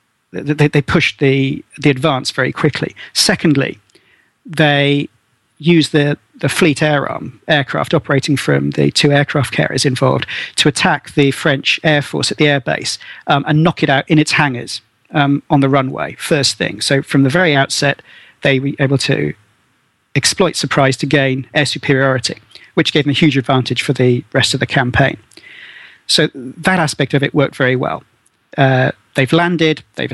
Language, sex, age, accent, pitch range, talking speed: English, male, 40-59, British, 130-150 Hz, 170 wpm